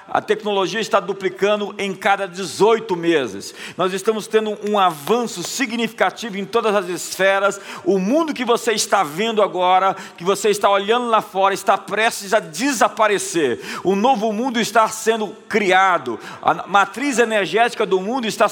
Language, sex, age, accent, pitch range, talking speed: Portuguese, male, 50-69, Brazilian, 195-235 Hz, 150 wpm